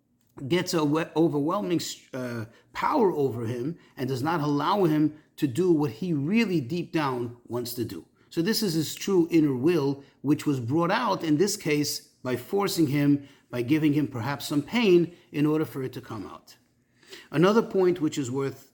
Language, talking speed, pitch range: English, 190 wpm, 125-165 Hz